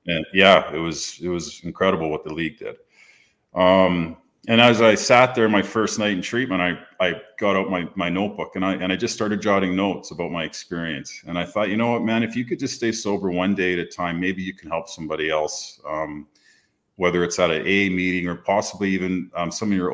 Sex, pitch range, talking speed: male, 90-105 Hz, 230 wpm